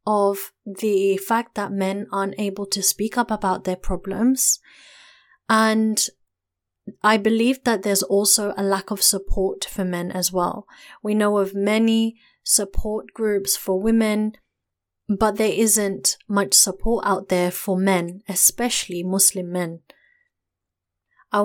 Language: English